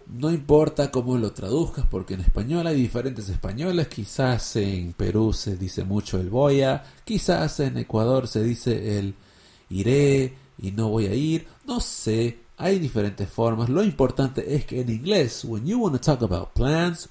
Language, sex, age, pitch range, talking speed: English, male, 50-69, 110-165 Hz, 175 wpm